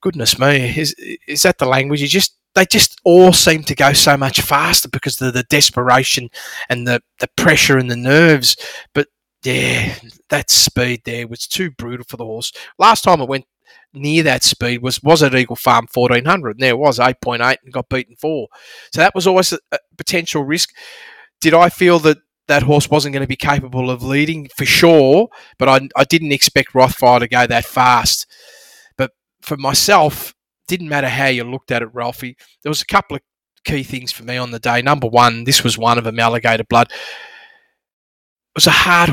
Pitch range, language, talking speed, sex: 120-155 Hz, English, 200 wpm, male